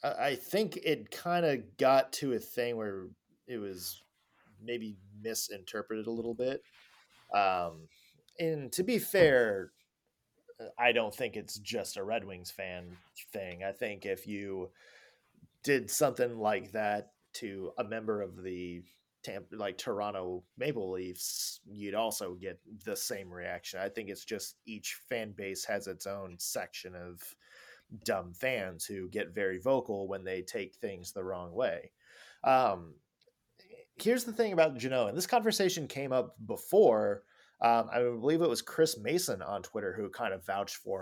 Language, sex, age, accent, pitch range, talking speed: English, male, 30-49, American, 95-140 Hz, 155 wpm